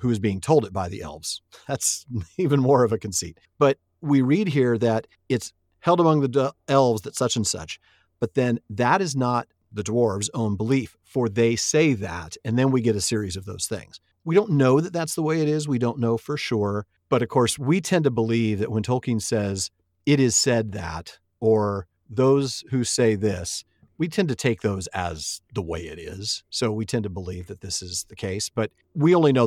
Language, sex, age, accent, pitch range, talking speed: English, male, 40-59, American, 100-130 Hz, 220 wpm